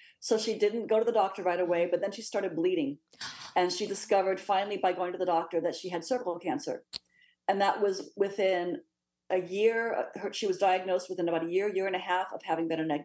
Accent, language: American, English